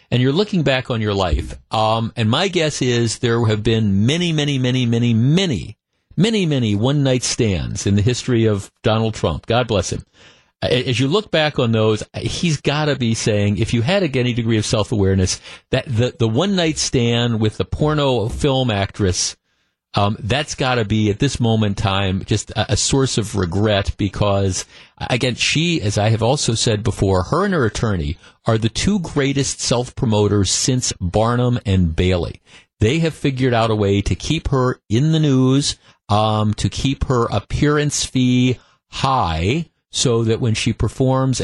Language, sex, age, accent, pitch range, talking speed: English, male, 50-69, American, 105-135 Hz, 180 wpm